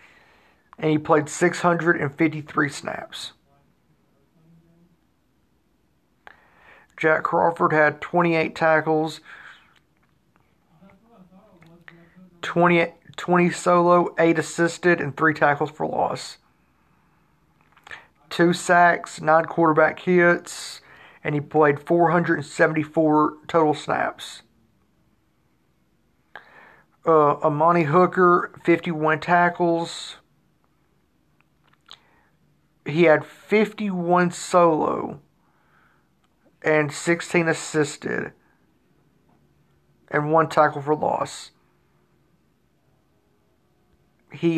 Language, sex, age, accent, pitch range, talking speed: English, male, 40-59, American, 155-175 Hz, 75 wpm